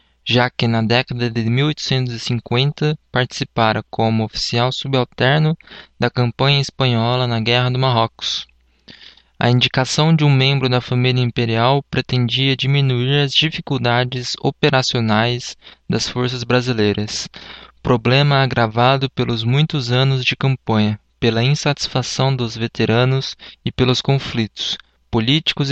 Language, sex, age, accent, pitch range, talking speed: Portuguese, male, 20-39, Brazilian, 115-135 Hz, 110 wpm